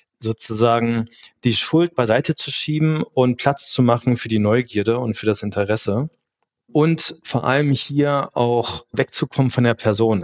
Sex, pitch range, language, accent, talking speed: male, 110-135 Hz, German, German, 150 wpm